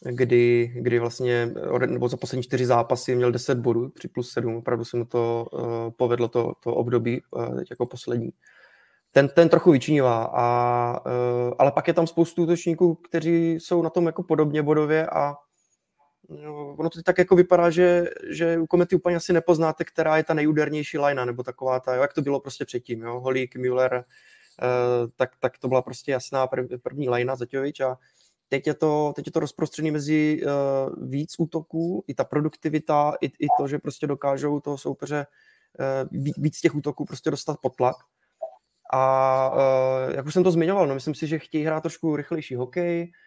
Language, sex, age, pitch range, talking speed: Czech, male, 20-39, 130-160 Hz, 180 wpm